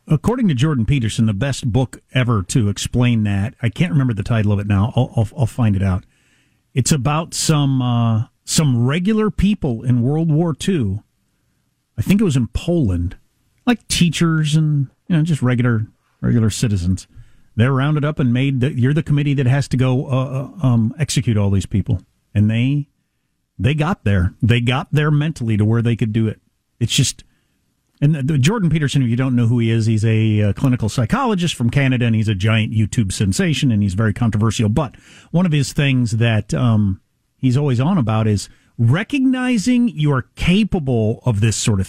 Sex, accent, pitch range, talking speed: male, American, 115-160 Hz, 190 wpm